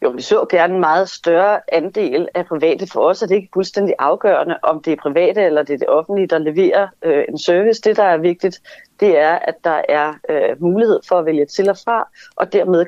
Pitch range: 165-205 Hz